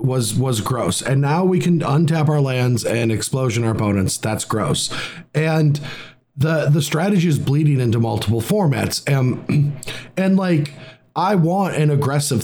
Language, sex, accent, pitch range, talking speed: English, male, American, 125-160 Hz, 155 wpm